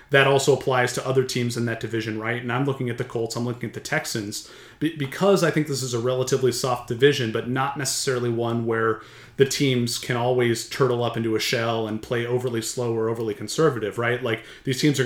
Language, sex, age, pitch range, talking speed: English, male, 30-49, 115-135 Hz, 225 wpm